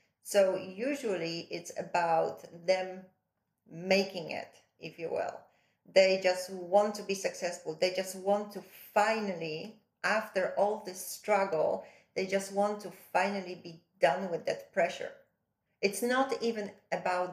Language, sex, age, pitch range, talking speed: English, female, 40-59, 180-210 Hz, 135 wpm